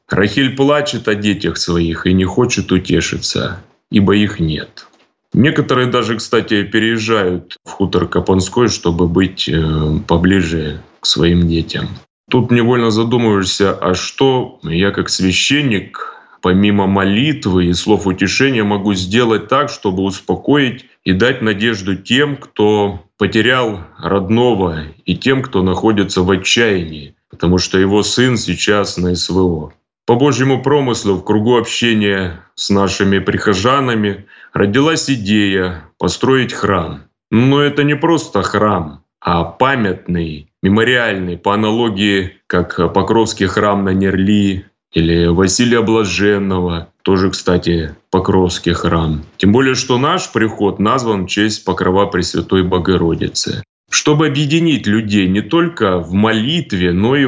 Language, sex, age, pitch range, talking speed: Russian, male, 20-39, 90-115 Hz, 125 wpm